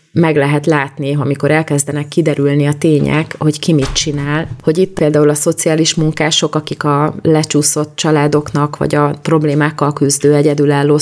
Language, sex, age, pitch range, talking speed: Hungarian, female, 30-49, 140-155 Hz, 145 wpm